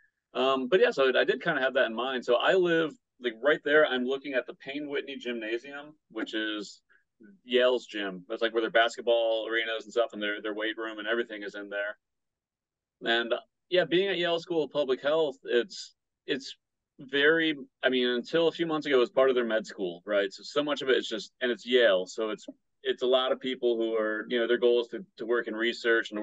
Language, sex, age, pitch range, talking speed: English, male, 30-49, 110-135 Hz, 245 wpm